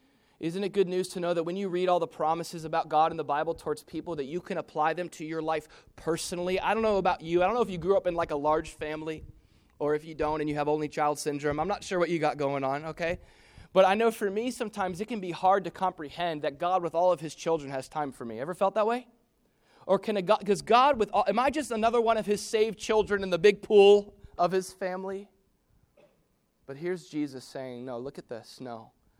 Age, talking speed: 30-49, 260 wpm